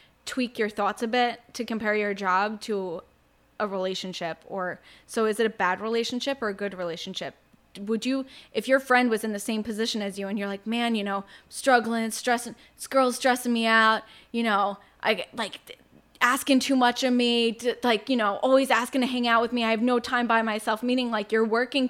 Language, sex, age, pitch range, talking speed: English, female, 10-29, 205-240 Hz, 210 wpm